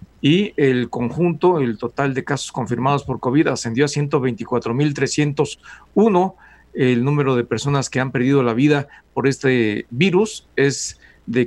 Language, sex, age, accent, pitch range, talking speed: Spanish, male, 50-69, Mexican, 130-160 Hz, 140 wpm